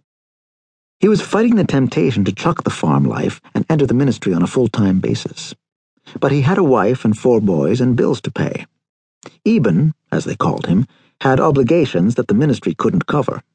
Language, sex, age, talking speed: English, male, 60-79, 185 wpm